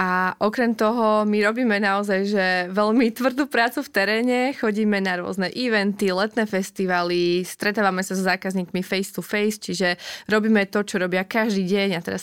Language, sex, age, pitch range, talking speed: Slovak, female, 20-39, 185-215 Hz, 165 wpm